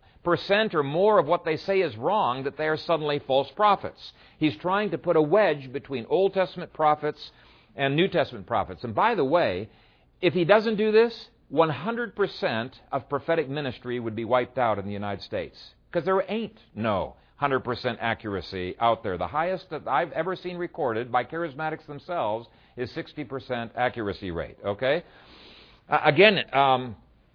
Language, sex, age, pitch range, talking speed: English, male, 50-69, 130-195 Hz, 165 wpm